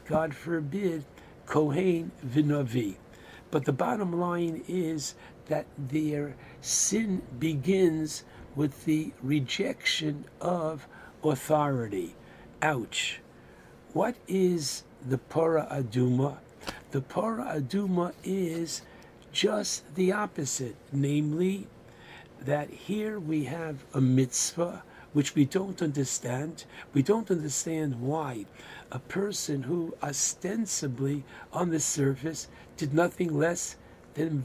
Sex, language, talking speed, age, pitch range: male, English, 100 wpm, 60-79, 135-170 Hz